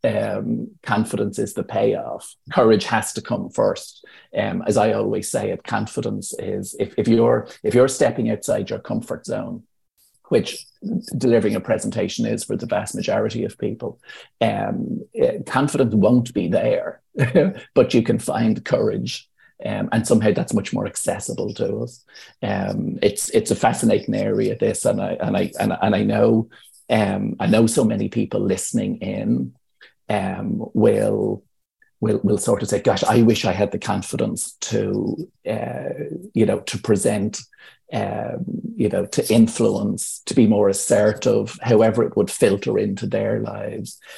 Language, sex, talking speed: English, male, 160 wpm